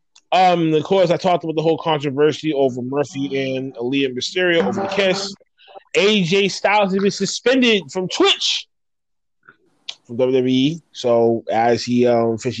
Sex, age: male, 20-39